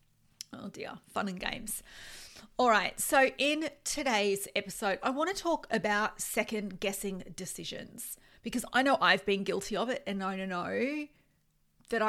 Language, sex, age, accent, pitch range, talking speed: English, female, 40-59, Australian, 195-250 Hz, 155 wpm